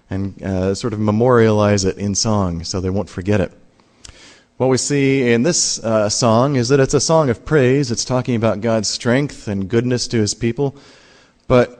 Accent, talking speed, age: American, 195 wpm, 30-49